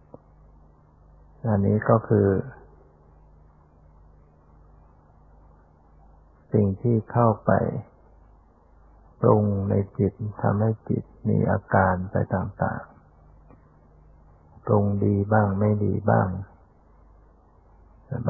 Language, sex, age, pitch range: Thai, male, 60-79, 75-110 Hz